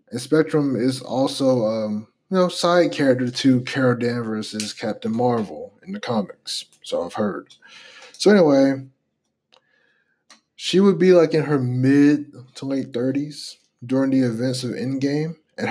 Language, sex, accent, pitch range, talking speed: English, male, American, 115-145 Hz, 145 wpm